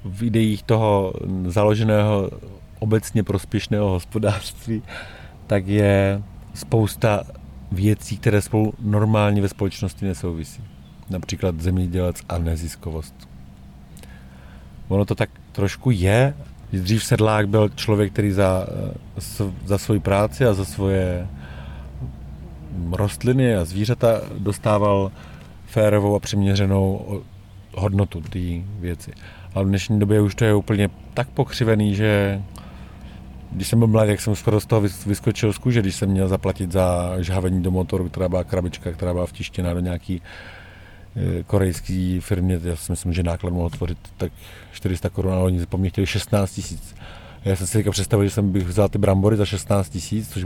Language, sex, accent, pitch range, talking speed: Czech, male, native, 90-105 Hz, 140 wpm